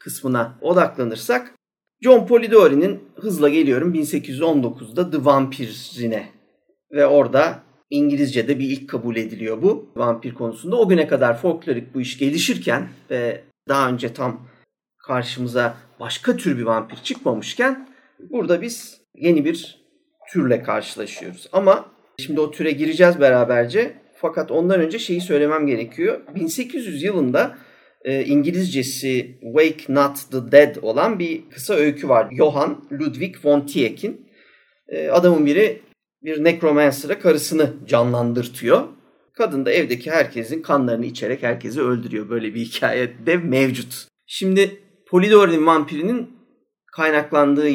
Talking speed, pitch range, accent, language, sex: 120 wpm, 125-185 Hz, Turkish, English, male